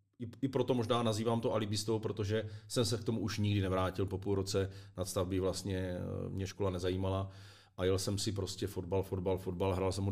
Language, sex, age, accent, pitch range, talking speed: Czech, male, 40-59, native, 95-105 Hz, 200 wpm